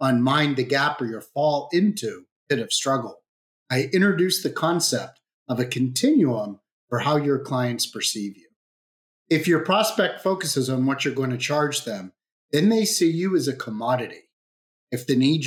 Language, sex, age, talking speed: English, male, 40-59, 170 wpm